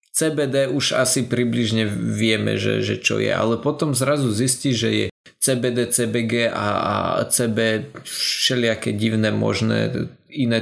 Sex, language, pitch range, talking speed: male, Slovak, 110-125 Hz, 135 wpm